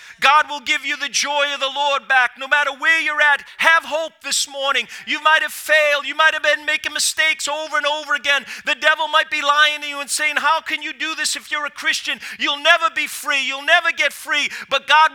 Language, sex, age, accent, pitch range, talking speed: English, male, 40-59, American, 200-290 Hz, 240 wpm